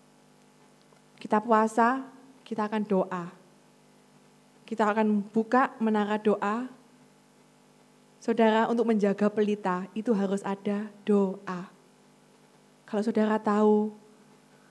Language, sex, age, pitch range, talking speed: Indonesian, female, 20-39, 200-230 Hz, 85 wpm